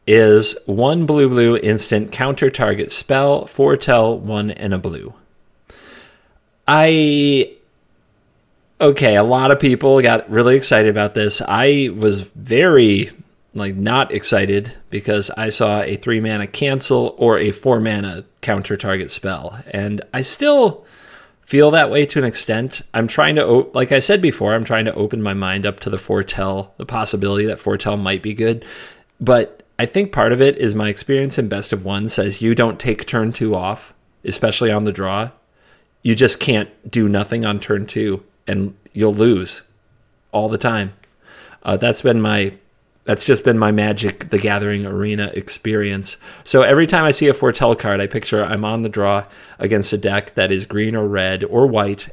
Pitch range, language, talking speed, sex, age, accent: 100-120 Hz, English, 175 wpm, male, 30-49, American